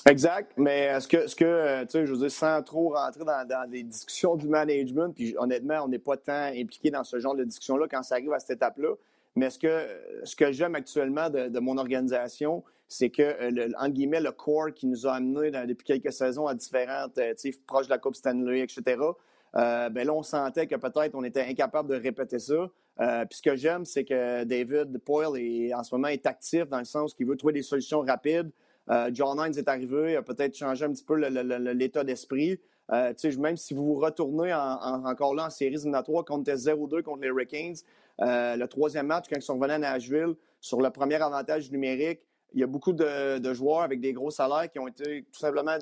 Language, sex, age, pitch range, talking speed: French, male, 30-49, 130-155 Hz, 230 wpm